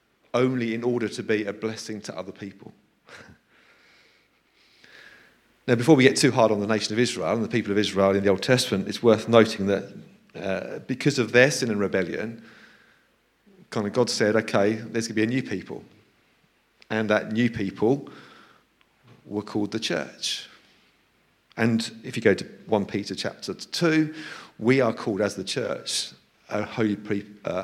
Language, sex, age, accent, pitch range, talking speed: English, male, 40-59, British, 105-125 Hz, 175 wpm